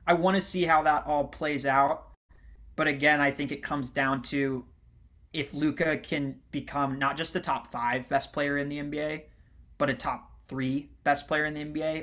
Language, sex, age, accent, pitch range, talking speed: English, male, 20-39, American, 130-155 Hz, 200 wpm